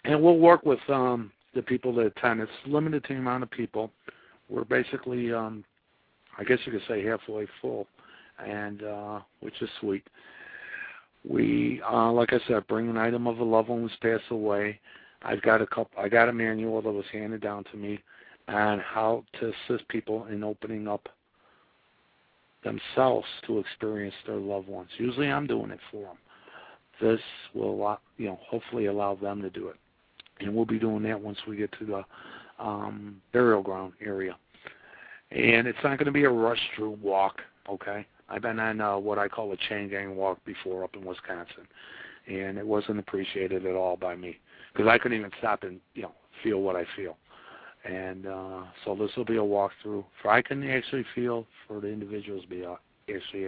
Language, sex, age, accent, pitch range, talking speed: English, male, 50-69, American, 100-115 Hz, 190 wpm